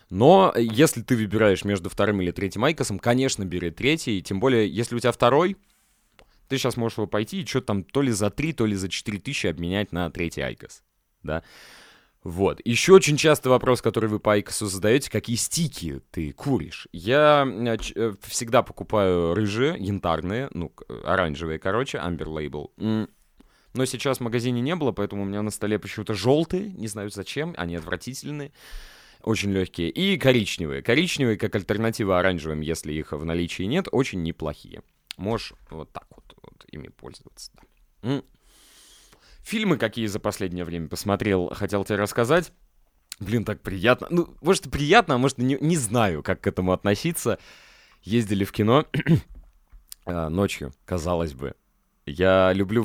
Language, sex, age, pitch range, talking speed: Russian, male, 20-39, 95-125 Hz, 155 wpm